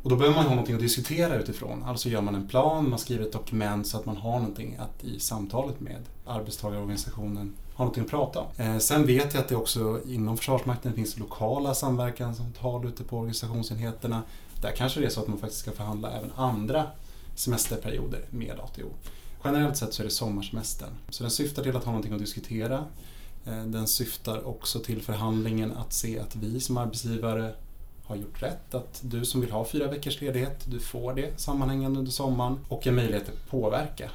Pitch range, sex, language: 110-125 Hz, male, Swedish